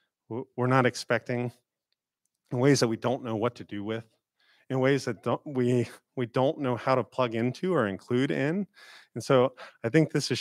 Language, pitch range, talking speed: English, 110-130 Hz, 195 wpm